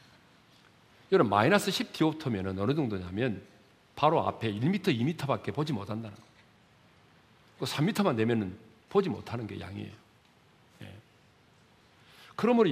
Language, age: Korean, 40-59